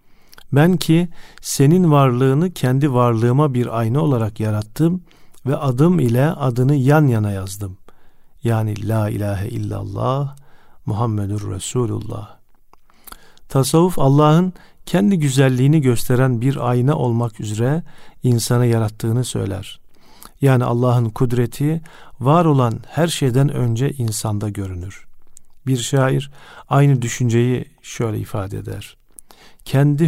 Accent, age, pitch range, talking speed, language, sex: native, 50-69, 110-145 Hz, 105 wpm, Turkish, male